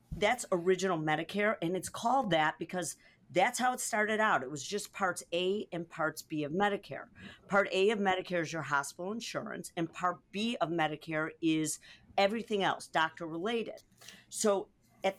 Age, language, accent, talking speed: 50-69, English, American, 170 wpm